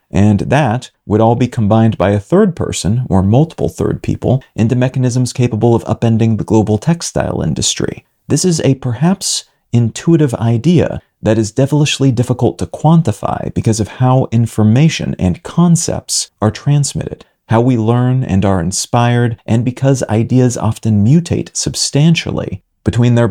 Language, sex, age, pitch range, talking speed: English, male, 40-59, 110-130 Hz, 145 wpm